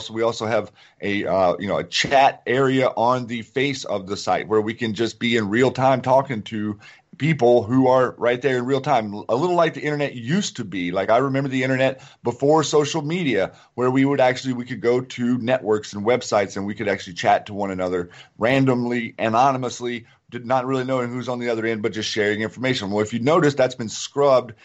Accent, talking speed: American, 225 wpm